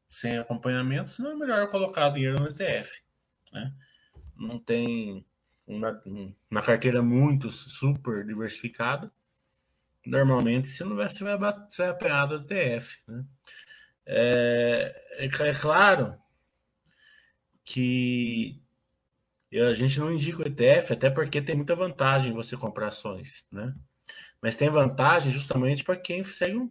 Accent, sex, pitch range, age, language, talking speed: Brazilian, male, 120-150 Hz, 20-39, Portuguese, 120 wpm